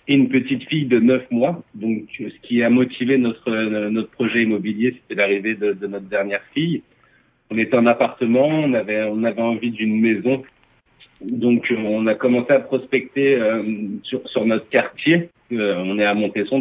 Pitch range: 105-130 Hz